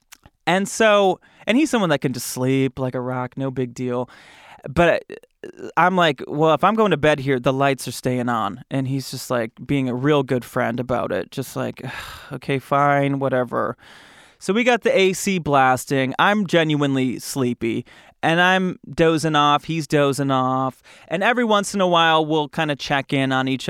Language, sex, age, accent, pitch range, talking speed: English, male, 20-39, American, 130-185 Hz, 190 wpm